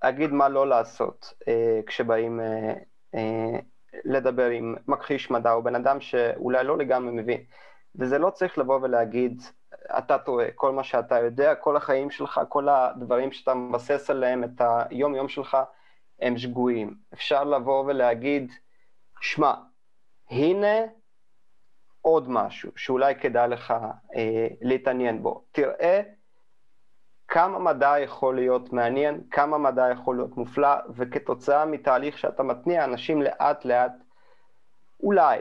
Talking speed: 125 wpm